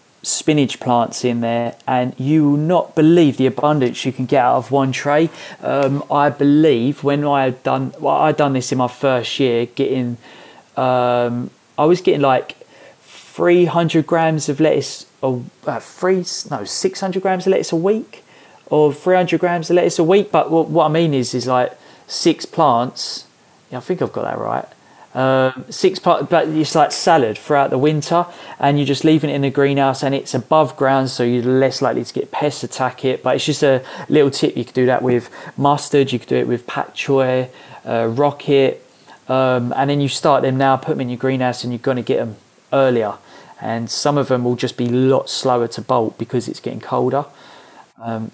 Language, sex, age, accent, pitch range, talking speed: English, male, 30-49, British, 125-150 Hz, 200 wpm